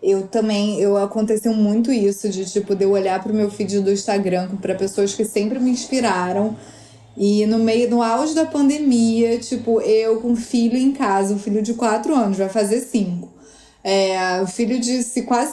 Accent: Brazilian